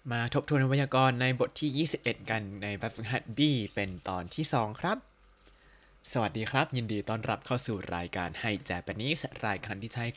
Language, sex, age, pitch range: Thai, male, 20-39, 105-140 Hz